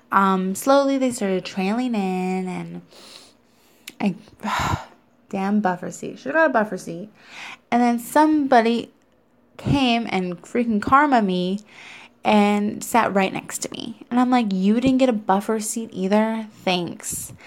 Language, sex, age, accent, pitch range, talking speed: English, female, 20-39, American, 190-245 Hz, 145 wpm